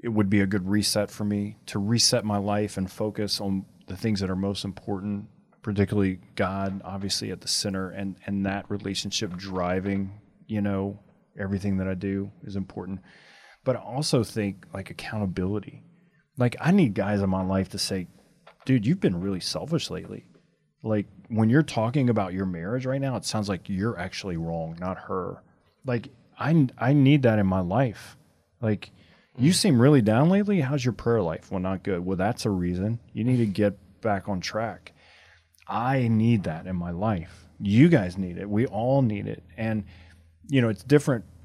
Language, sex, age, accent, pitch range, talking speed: English, male, 30-49, American, 95-120 Hz, 185 wpm